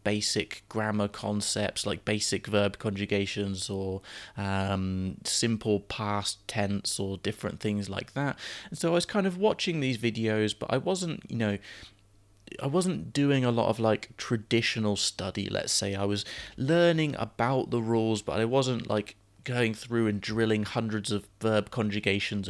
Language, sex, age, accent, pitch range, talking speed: English, male, 20-39, British, 100-115 Hz, 160 wpm